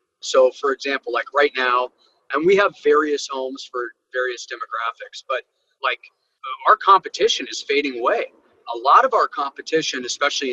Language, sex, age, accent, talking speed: English, male, 40-59, American, 155 wpm